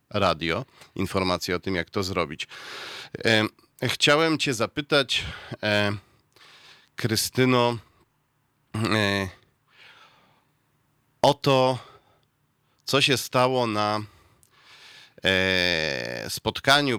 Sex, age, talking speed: male, 40-59, 65 wpm